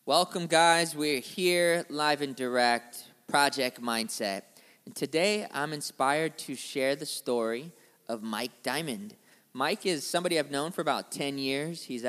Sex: male